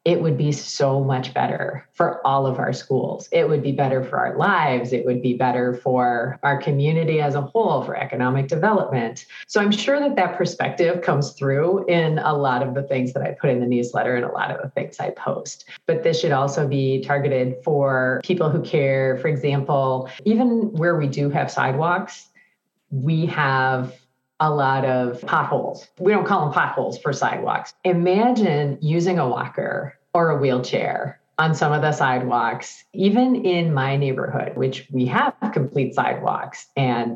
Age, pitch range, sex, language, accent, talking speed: 30-49, 130-170 Hz, female, English, American, 180 wpm